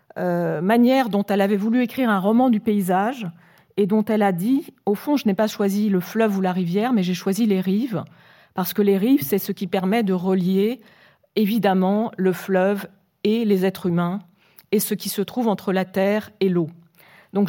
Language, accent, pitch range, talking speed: French, French, 185-220 Hz, 205 wpm